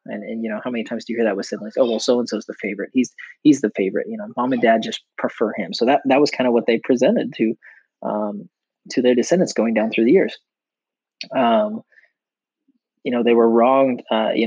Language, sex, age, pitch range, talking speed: English, male, 20-39, 110-150 Hz, 245 wpm